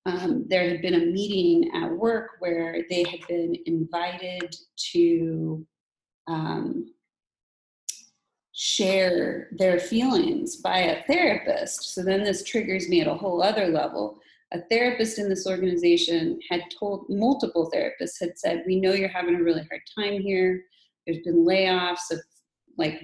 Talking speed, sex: 145 wpm, female